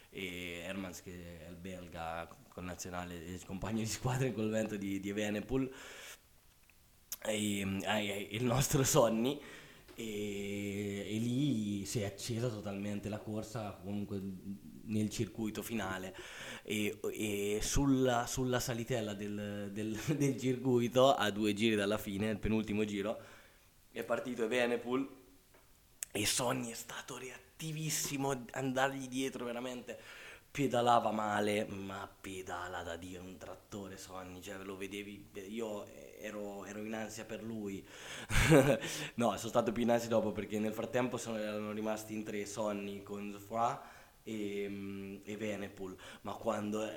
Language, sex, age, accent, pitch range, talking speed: Italian, male, 20-39, native, 100-120 Hz, 130 wpm